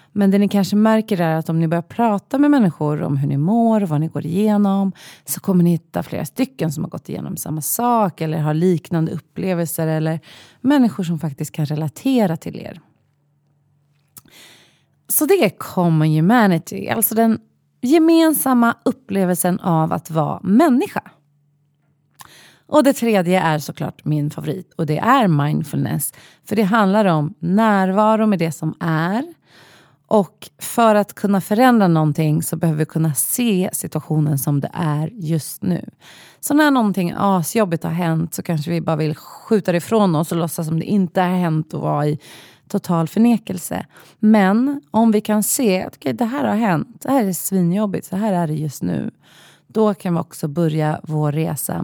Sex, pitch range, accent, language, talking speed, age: female, 155-215 Hz, native, Swedish, 175 wpm, 30-49